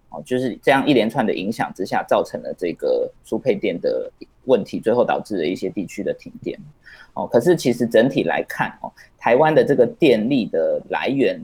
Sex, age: male, 20-39